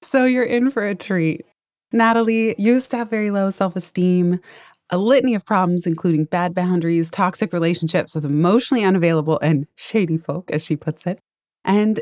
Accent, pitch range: American, 160-205 Hz